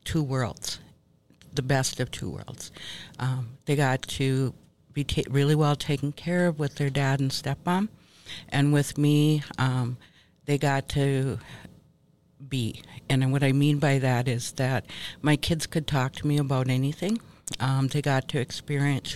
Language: English